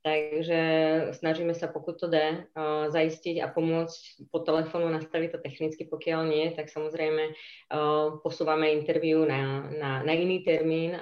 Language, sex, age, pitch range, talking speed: Czech, female, 20-39, 155-180 Hz, 135 wpm